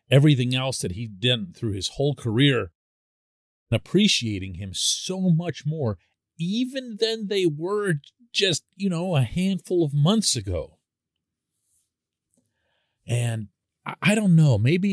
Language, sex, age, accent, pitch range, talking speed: English, male, 40-59, American, 95-140 Hz, 125 wpm